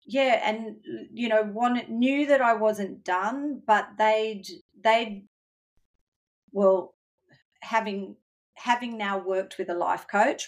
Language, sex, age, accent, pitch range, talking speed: English, female, 40-59, Australian, 175-210 Hz, 125 wpm